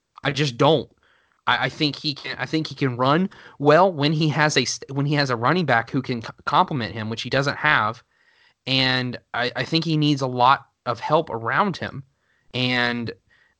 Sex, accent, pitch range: male, American, 120-150 Hz